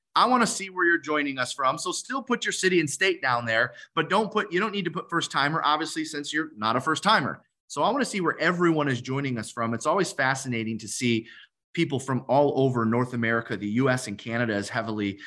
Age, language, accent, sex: 30-49, English, American, male